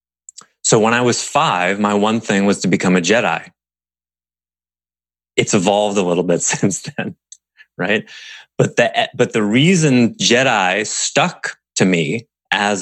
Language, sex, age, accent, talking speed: English, male, 30-49, American, 145 wpm